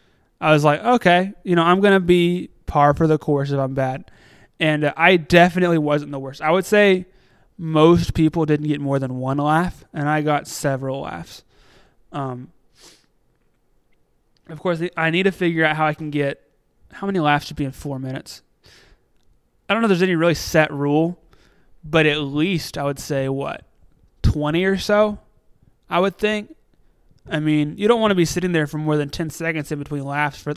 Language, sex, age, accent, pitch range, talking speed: English, male, 20-39, American, 145-175 Hz, 195 wpm